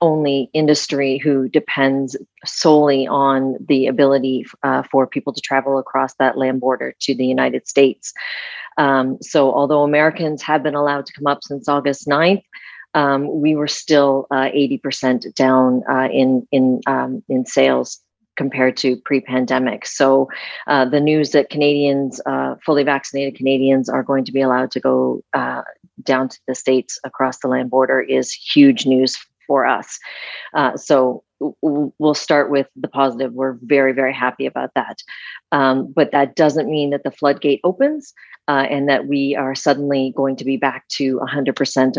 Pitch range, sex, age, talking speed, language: 130-145 Hz, female, 40-59, 165 wpm, English